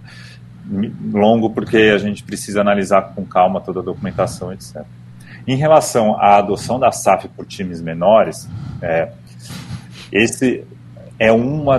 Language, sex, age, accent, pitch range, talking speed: Portuguese, male, 40-59, Brazilian, 90-115 Hz, 125 wpm